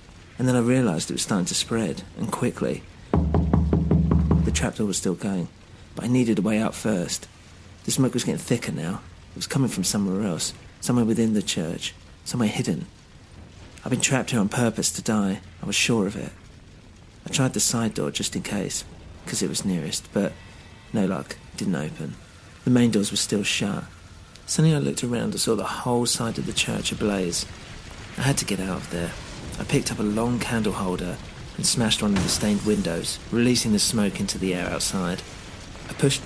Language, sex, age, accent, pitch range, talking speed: English, male, 40-59, British, 90-120 Hz, 200 wpm